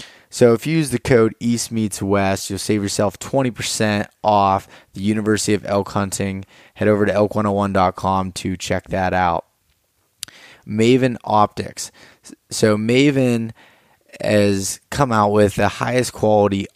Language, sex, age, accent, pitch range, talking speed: English, male, 20-39, American, 95-110 Hz, 135 wpm